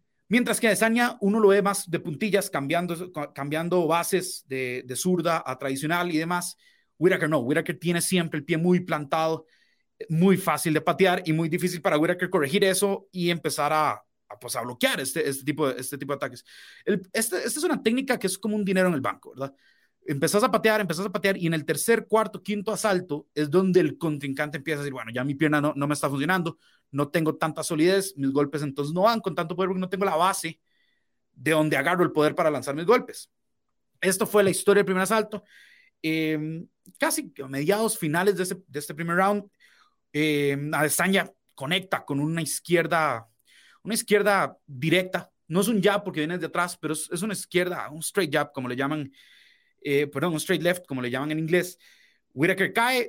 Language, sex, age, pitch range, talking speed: Spanish, male, 30-49, 155-195 Hz, 205 wpm